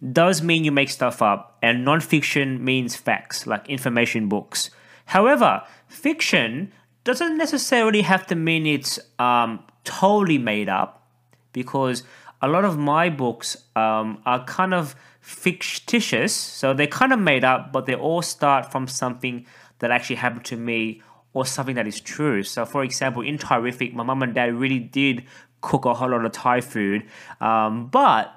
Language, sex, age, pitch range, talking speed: English, male, 20-39, 115-150 Hz, 165 wpm